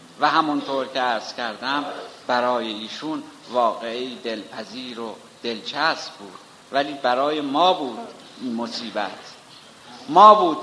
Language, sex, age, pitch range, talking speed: Persian, male, 50-69, 130-165 Hz, 120 wpm